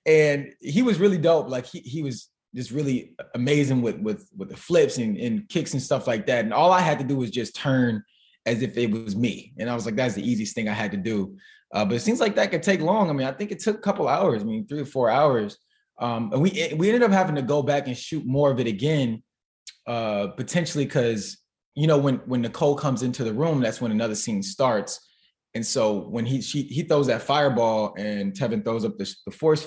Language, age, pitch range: English, 20-39, 115-160 Hz